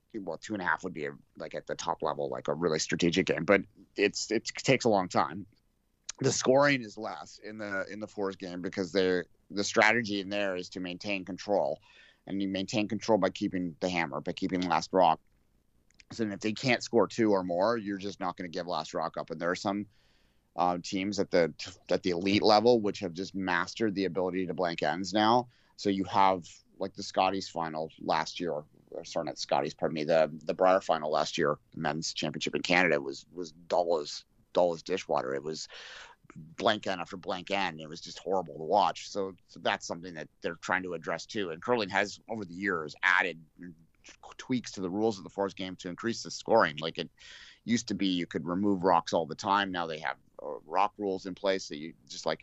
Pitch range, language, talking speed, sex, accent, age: 90-105 Hz, English, 220 wpm, male, American, 30-49